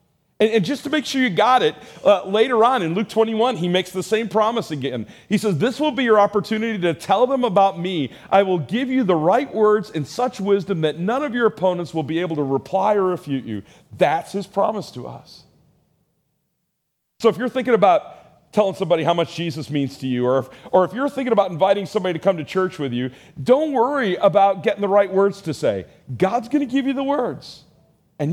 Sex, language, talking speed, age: male, English, 220 wpm, 40-59